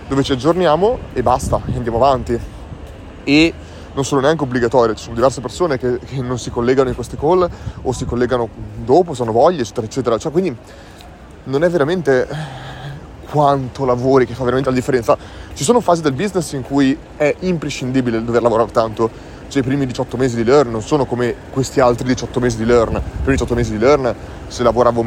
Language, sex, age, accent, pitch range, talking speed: Italian, male, 20-39, native, 115-140 Hz, 190 wpm